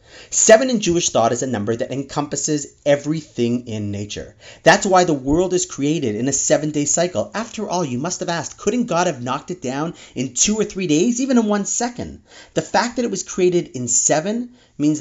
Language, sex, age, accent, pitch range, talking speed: English, male, 30-49, American, 120-180 Hz, 210 wpm